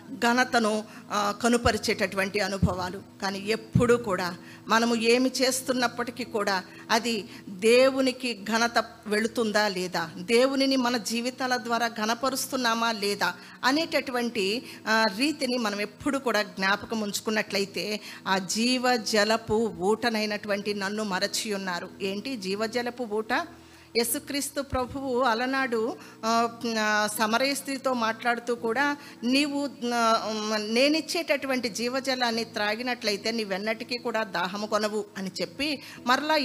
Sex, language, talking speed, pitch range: female, Telugu, 85 wpm, 210-250 Hz